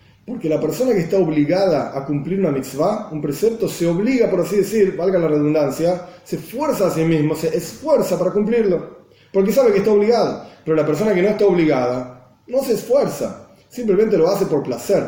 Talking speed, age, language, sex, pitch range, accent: 195 wpm, 30-49, Spanish, male, 155-205 Hz, Argentinian